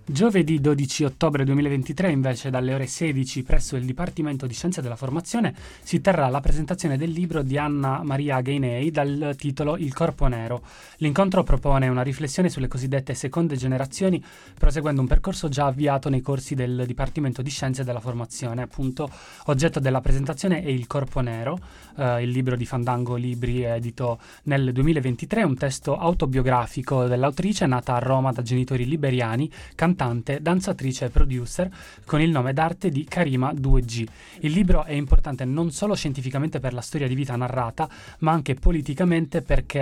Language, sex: Italian, male